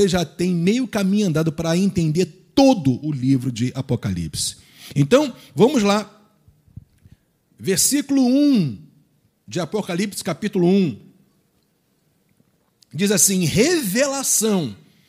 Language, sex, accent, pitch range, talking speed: Portuguese, male, Brazilian, 165-235 Hz, 95 wpm